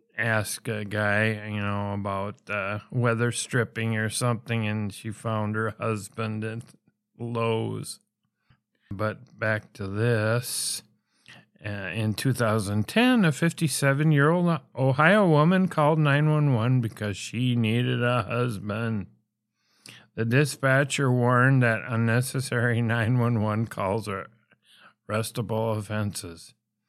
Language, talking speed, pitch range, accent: English, 105 wpm, 110-130 Hz, American